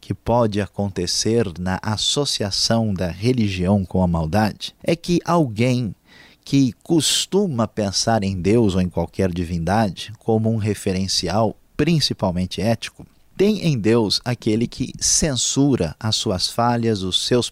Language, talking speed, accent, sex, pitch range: Portuguese, 130 wpm, Brazilian, male, 95-125 Hz